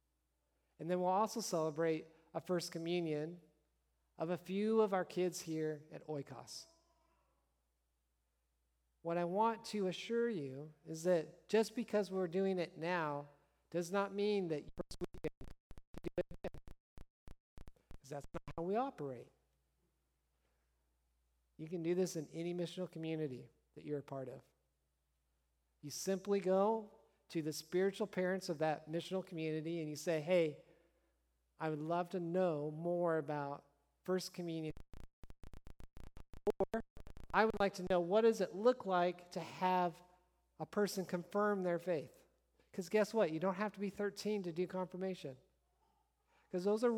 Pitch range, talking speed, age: 140-195 Hz, 150 wpm, 50-69